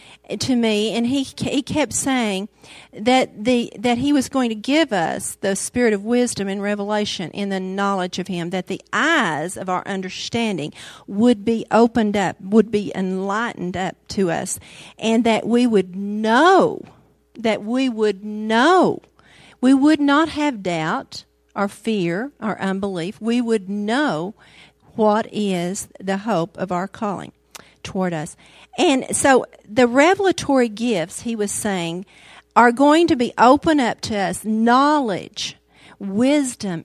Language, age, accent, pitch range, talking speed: English, 50-69, American, 195-250 Hz, 150 wpm